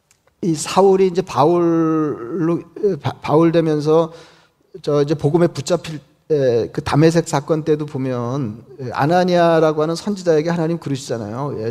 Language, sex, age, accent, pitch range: Korean, male, 40-59, native, 140-175 Hz